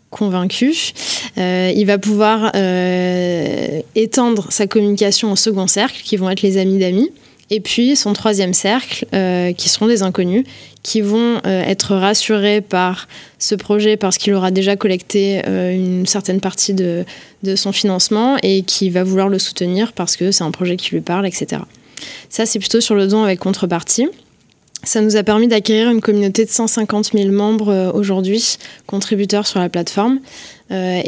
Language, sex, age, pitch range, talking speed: French, female, 20-39, 190-220 Hz, 170 wpm